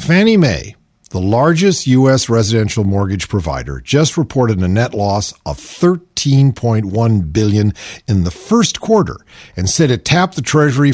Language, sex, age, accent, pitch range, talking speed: English, male, 50-69, American, 105-160 Hz, 145 wpm